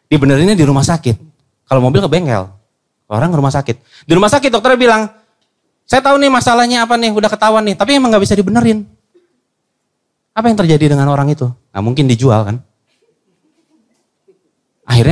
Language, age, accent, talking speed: Indonesian, 30-49, native, 165 wpm